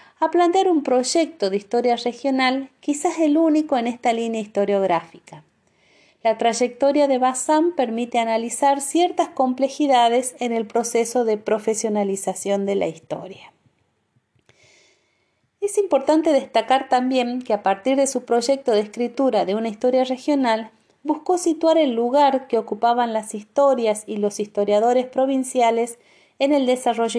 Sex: female